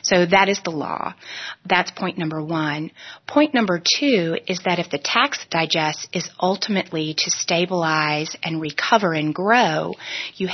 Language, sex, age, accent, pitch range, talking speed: English, female, 30-49, American, 160-185 Hz, 155 wpm